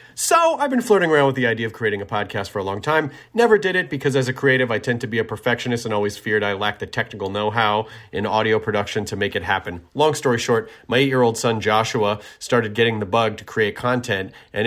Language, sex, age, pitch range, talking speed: English, male, 40-59, 110-140 Hz, 240 wpm